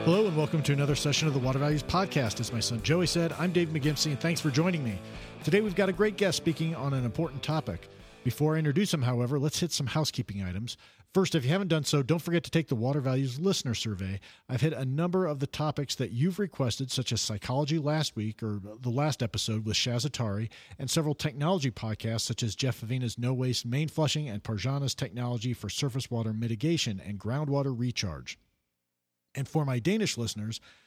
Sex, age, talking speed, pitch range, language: male, 50-69, 210 wpm, 110-160 Hz, English